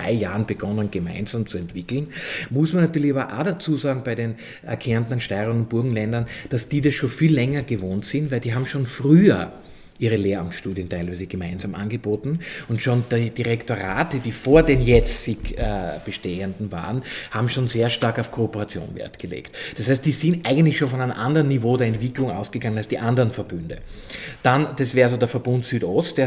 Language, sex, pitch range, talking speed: German, male, 110-140 Hz, 180 wpm